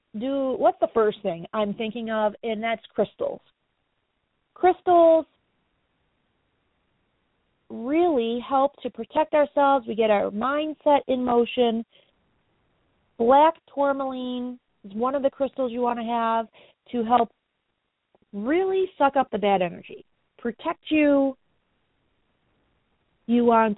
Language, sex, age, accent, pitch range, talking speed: English, female, 30-49, American, 220-290 Hz, 115 wpm